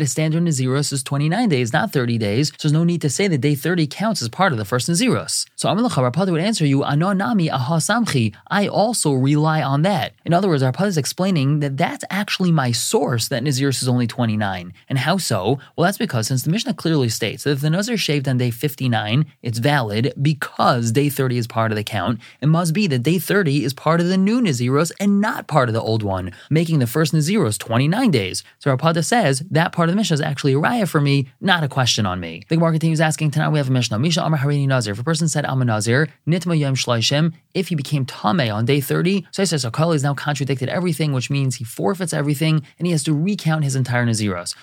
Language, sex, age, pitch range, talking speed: English, male, 20-39, 125-165 Hz, 230 wpm